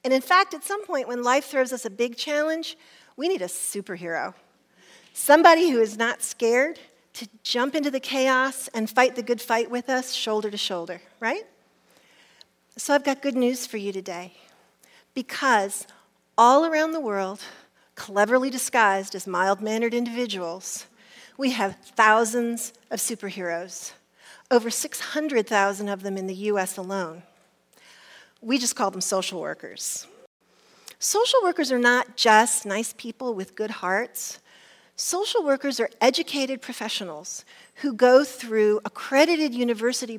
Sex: female